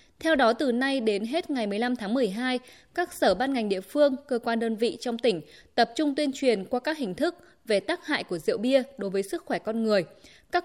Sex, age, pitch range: female, 20-39, 215-275 Hz